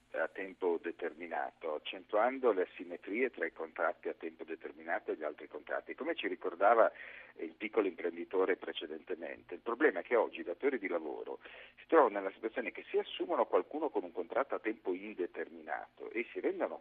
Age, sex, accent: 50-69, male, native